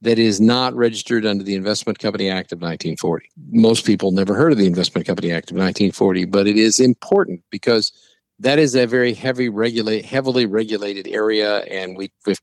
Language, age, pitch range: English, 50-69, 105-130 Hz